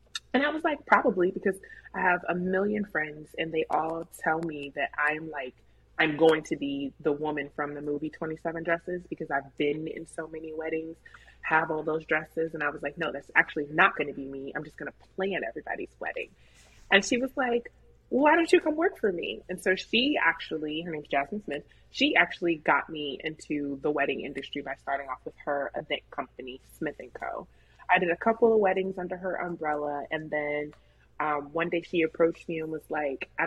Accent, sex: American, female